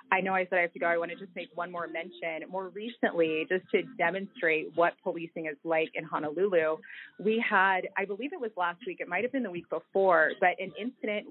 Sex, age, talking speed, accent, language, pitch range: female, 30-49, 240 wpm, American, English, 175-220 Hz